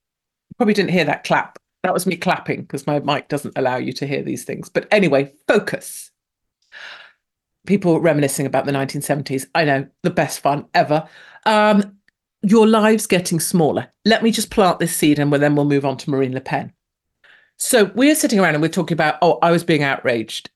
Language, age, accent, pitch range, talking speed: English, 40-59, British, 145-180 Hz, 195 wpm